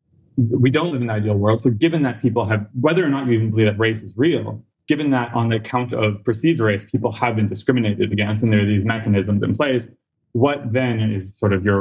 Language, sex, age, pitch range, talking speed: English, male, 20-39, 105-130 Hz, 245 wpm